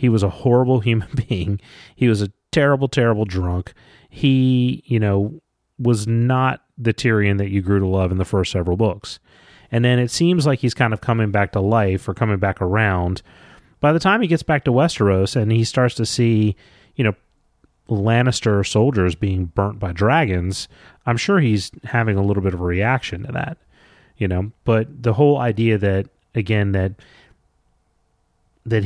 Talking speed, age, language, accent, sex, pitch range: 185 wpm, 30-49, English, American, male, 95-125 Hz